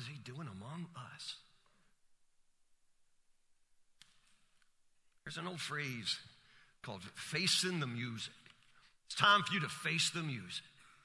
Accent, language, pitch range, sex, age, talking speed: American, English, 170-240 Hz, male, 50-69, 115 wpm